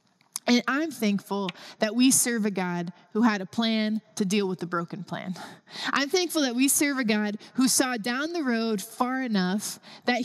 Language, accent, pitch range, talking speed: English, American, 200-255 Hz, 195 wpm